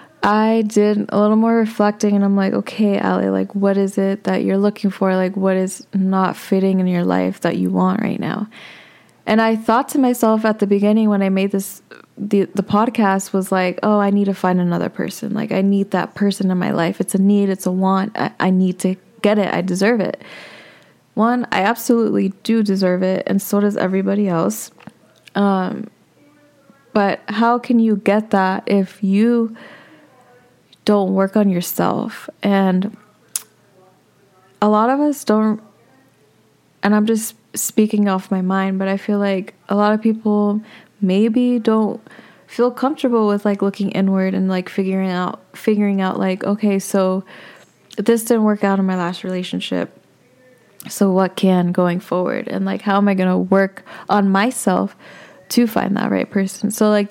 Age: 20-39